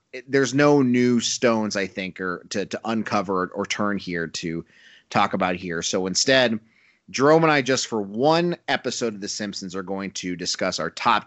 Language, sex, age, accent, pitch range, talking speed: English, male, 30-49, American, 95-120 Hz, 190 wpm